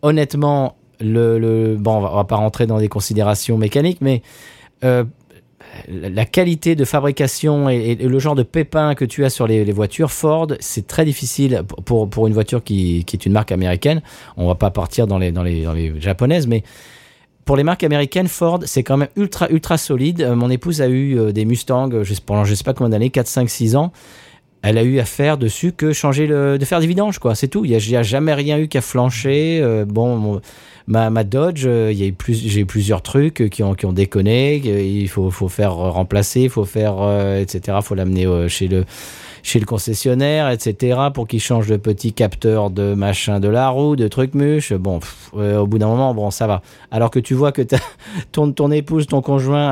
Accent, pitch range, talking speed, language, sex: French, 105-140 Hz, 225 wpm, French, male